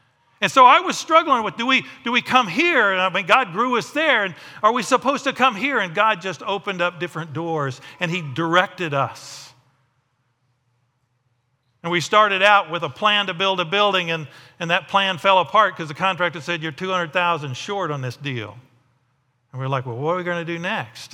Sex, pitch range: male, 135-190 Hz